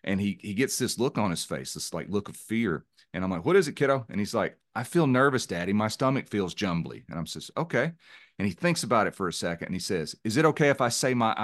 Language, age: English, 40-59